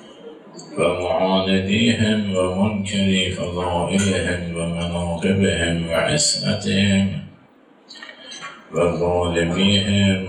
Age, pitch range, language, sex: 50-69, 90-100 Hz, Persian, male